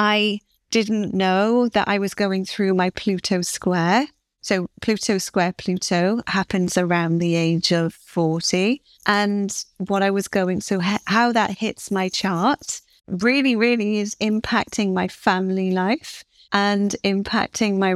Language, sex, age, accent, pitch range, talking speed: English, female, 30-49, British, 185-225 Hz, 140 wpm